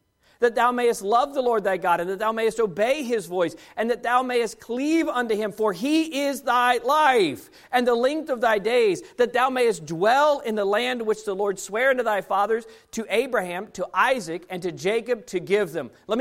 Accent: American